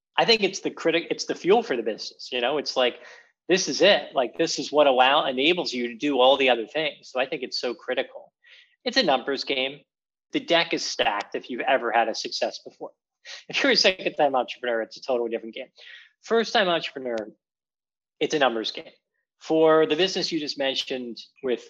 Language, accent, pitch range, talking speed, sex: English, American, 120-170 Hz, 215 wpm, male